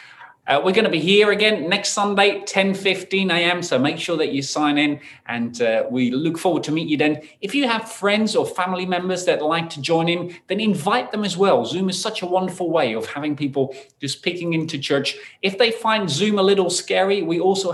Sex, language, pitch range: male, English, 130-180 Hz